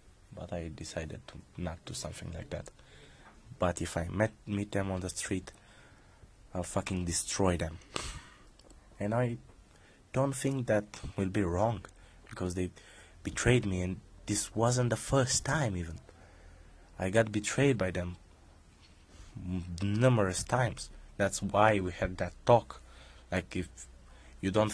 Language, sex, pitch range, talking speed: Romanian, male, 85-110 Hz, 140 wpm